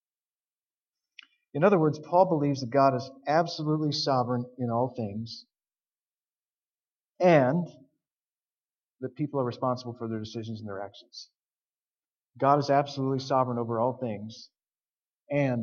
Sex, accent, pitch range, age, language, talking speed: male, American, 115-140 Hz, 40-59, English, 125 wpm